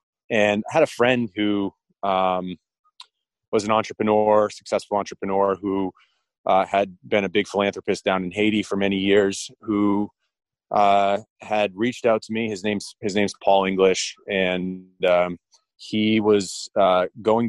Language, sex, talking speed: English, male, 150 wpm